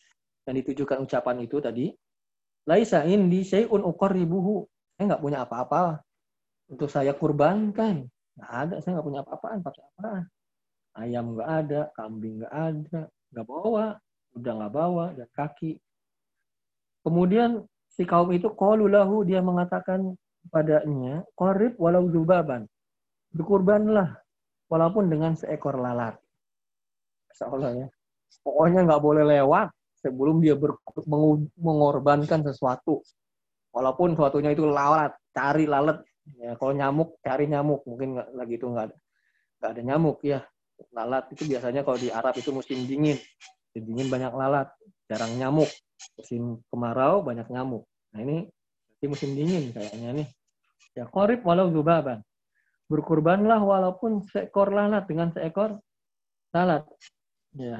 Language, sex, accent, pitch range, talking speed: Indonesian, male, native, 130-180 Hz, 125 wpm